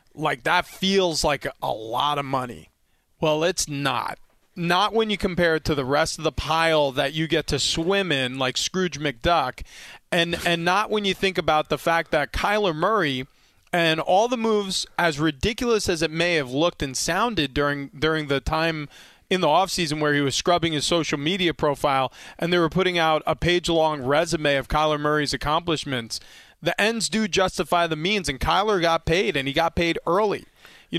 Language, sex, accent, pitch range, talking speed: English, male, American, 150-190 Hz, 200 wpm